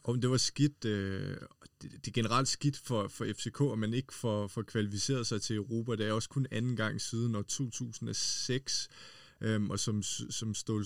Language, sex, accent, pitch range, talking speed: Danish, male, native, 105-125 Hz, 180 wpm